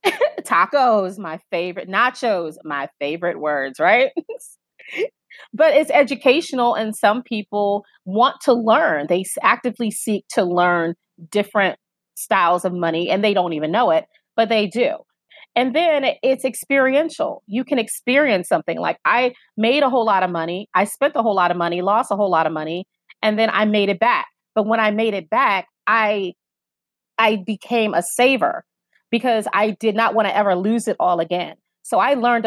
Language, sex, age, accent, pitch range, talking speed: English, female, 30-49, American, 185-240 Hz, 175 wpm